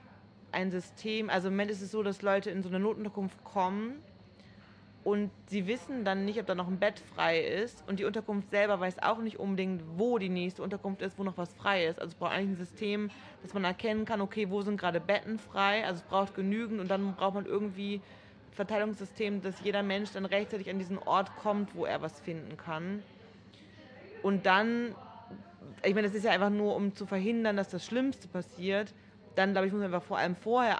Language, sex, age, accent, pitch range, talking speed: German, female, 30-49, German, 180-210 Hz, 215 wpm